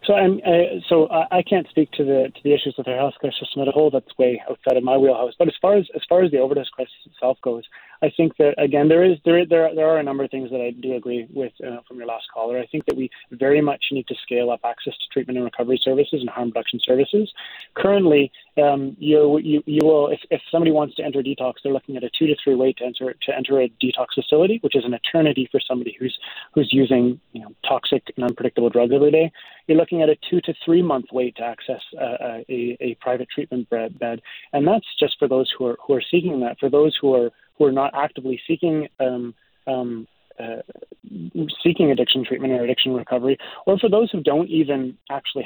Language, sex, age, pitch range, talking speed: English, male, 30-49, 125-150 Hz, 235 wpm